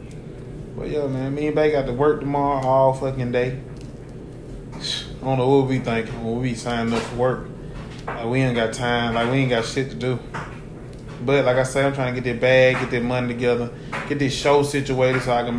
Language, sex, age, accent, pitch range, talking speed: English, male, 20-39, American, 125-145 Hz, 230 wpm